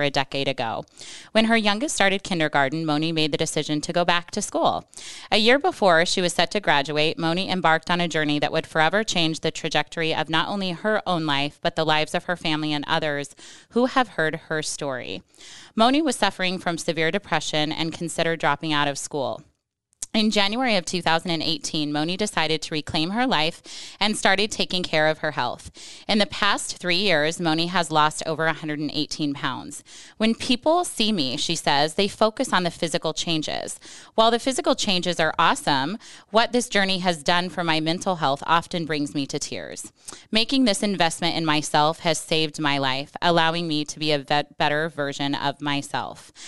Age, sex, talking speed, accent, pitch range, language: 20-39, female, 185 wpm, American, 155-200 Hz, English